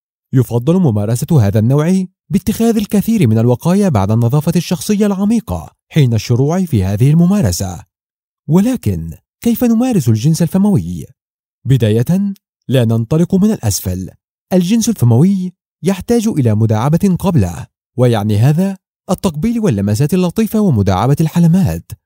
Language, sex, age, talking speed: Arabic, male, 30-49, 110 wpm